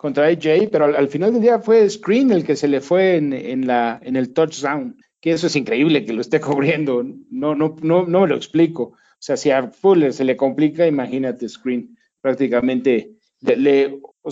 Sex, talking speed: male, 210 wpm